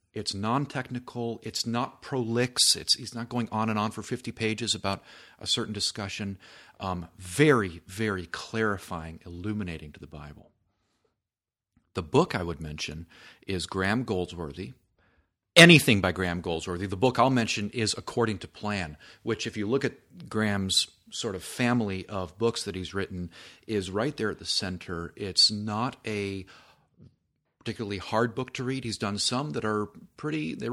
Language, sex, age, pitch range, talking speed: English, male, 40-59, 90-120 Hz, 160 wpm